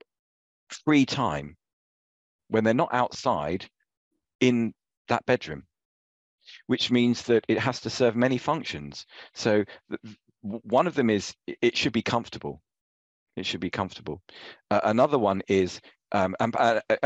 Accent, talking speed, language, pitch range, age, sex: British, 130 wpm, English, 90-125 Hz, 50-69, male